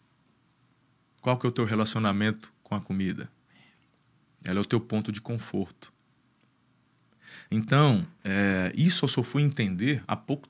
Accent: Brazilian